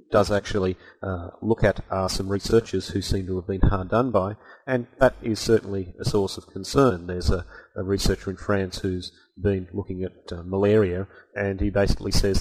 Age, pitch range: 30-49, 95-110 Hz